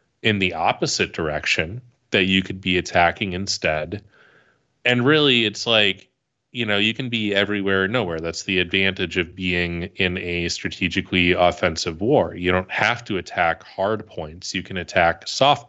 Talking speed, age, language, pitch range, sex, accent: 160 wpm, 30-49, English, 90-110 Hz, male, American